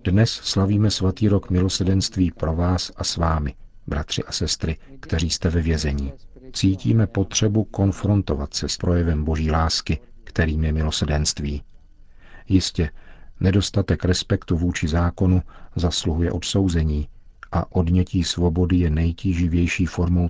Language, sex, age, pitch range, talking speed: Czech, male, 50-69, 85-100 Hz, 120 wpm